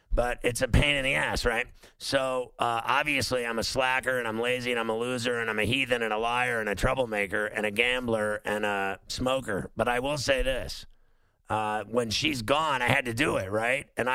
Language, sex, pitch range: English, male, 110-130 Hz